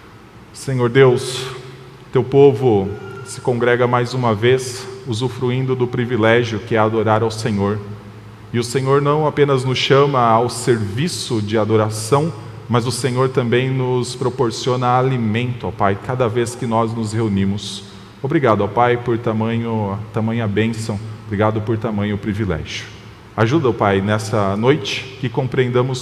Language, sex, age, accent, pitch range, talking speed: Portuguese, male, 20-39, Brazilian, 105-130 Hz, 140 wpm